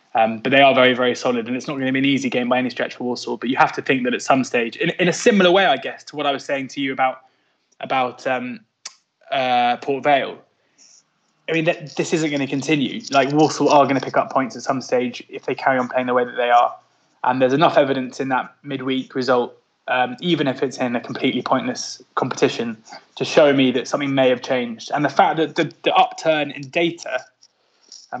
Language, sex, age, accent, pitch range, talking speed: English, male, 20-39, British, 125-150 Hz, 240 wpm